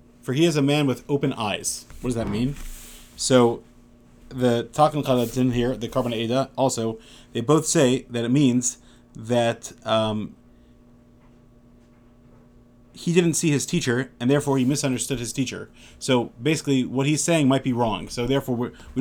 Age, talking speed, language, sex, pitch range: 30-49, 160 wpm, English, male, 115-135 Hz